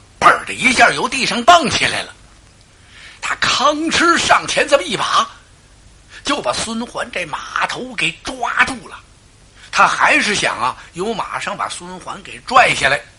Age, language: 60-79, Chinese